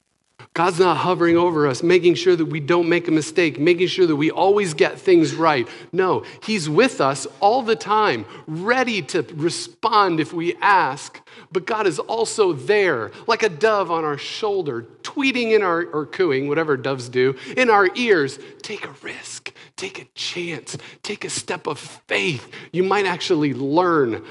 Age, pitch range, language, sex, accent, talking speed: 40-59, 155-235 Hz, English, male, American, 175 wpm